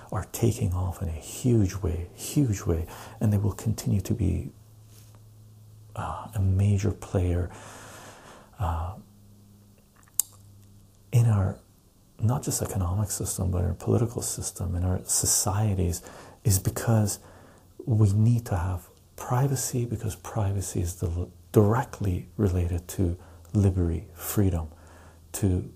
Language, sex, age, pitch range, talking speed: English, male, 40-59, 90-110 Hz, 115 wpm